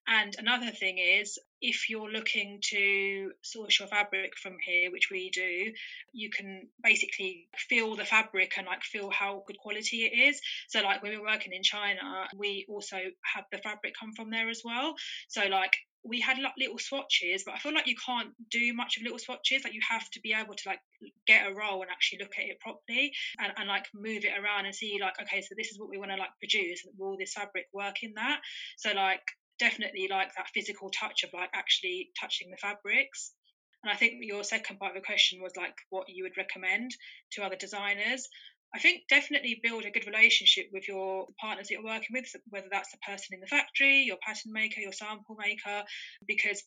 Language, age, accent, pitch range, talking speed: English, 20-39, British, 195-235 Hz, 215 wpm